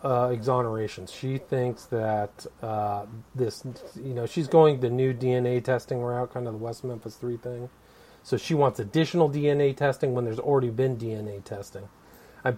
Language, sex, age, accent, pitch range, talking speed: English, male, 40-59, American, 115-140 Hz, 170 wpm